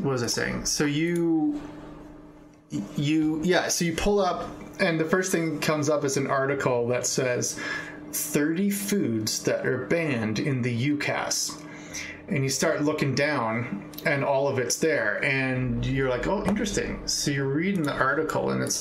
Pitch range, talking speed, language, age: 125-150 Hz, 170 wpm, English, 30-49